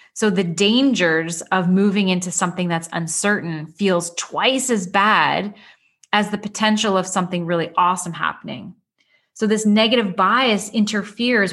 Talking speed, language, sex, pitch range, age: 135 wpm, English, female, 175-215 Hz, 20-39